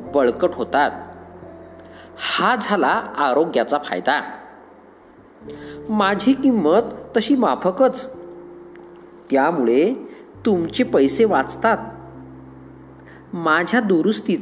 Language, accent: Marathi, native